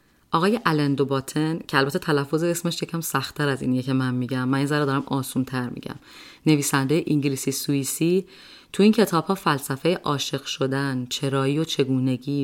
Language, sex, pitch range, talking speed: Persian, female, 135-160 Hz, 150 wpm